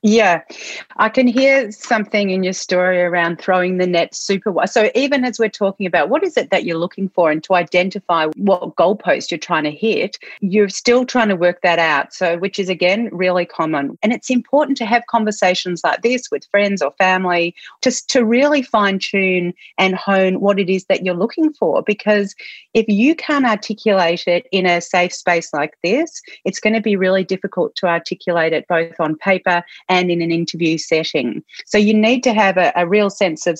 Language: English